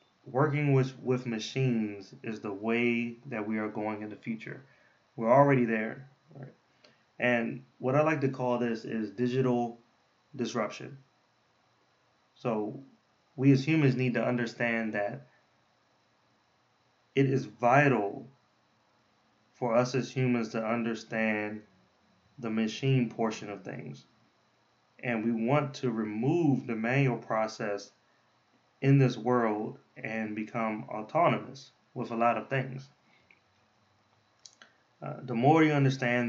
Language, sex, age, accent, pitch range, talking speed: English, male, 20-39, American, 110-130 Hz, 120 wpm